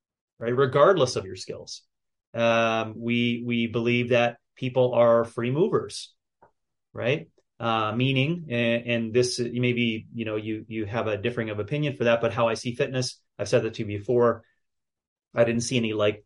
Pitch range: 115-135 Hz